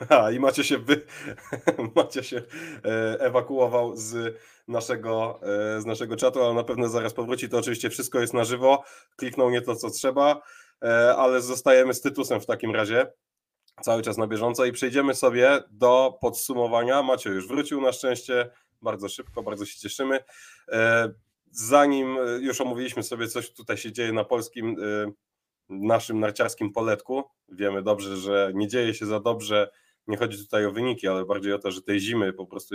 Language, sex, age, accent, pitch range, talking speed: Polish, male, 20-39, native, 105-125 Hz, 165 wpm